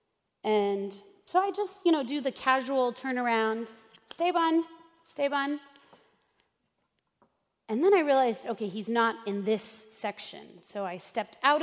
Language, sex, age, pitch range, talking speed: English, female, 30-49, 210-285 Hz, 145 wpm